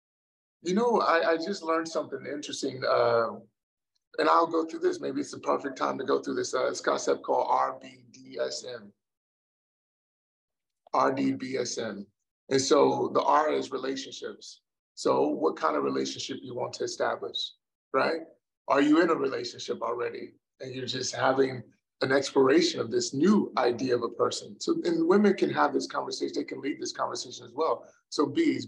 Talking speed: 170 wpm